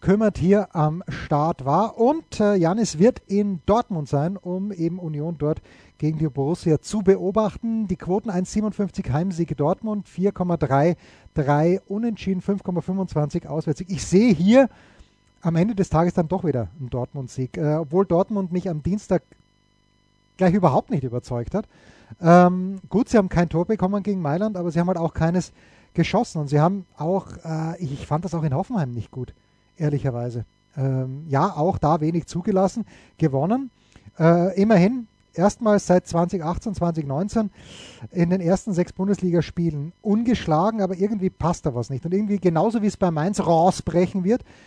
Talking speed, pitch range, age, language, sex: 160 wpm, 155-200 Hz, 30-49, German, male